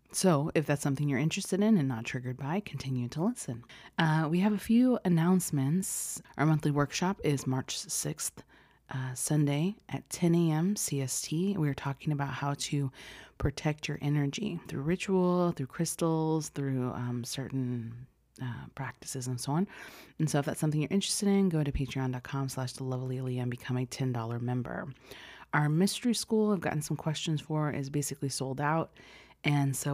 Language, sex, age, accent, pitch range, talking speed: English, female, 30-49, American, 130-165 Hz, 170 wpm